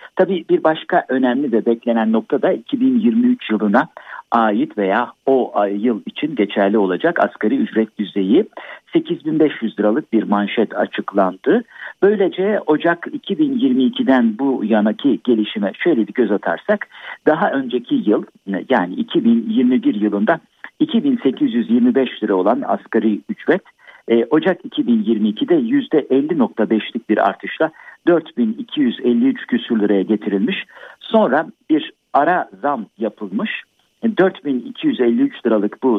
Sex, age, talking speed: male, 50-69, 105 wpm